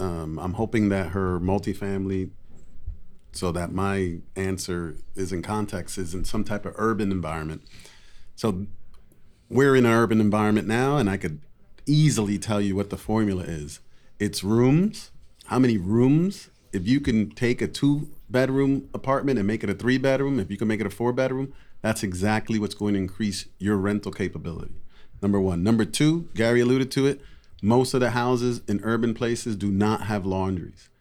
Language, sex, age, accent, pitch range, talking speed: English, male, 30-49, American, 95-120 Hz, 170 wpm